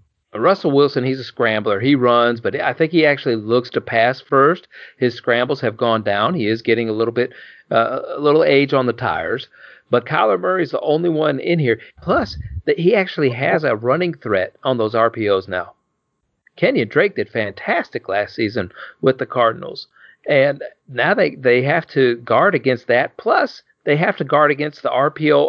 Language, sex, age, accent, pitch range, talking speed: English, male, 40-59, American, 115-155 Hz, 190 wpm